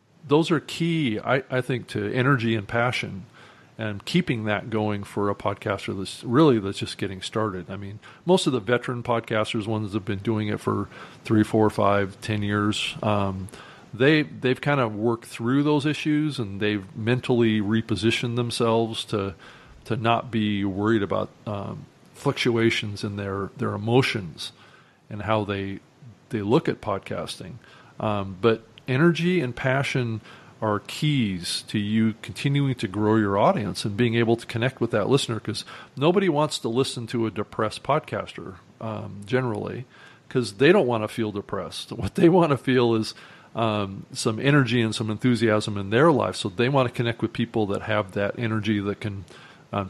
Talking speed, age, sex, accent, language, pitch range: 170 wpm, 40-59, male, American, English, 105-130 Hz